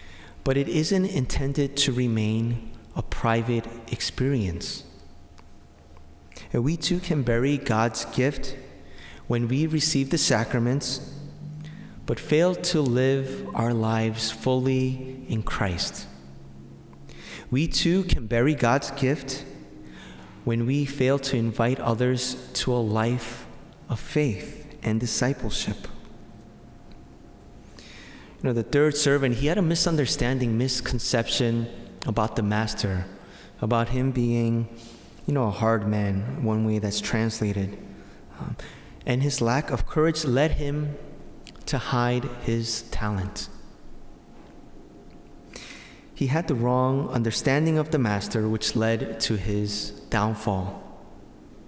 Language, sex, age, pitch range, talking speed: English, male, 30-49, 110-140 Hz, 115 wpm